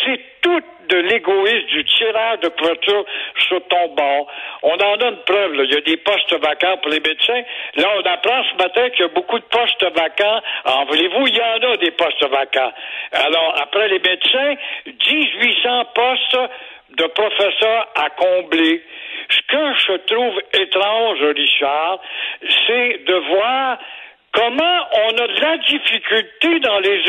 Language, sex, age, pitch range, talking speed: French, male, 60-79, 185-265 Hz, 160 wpm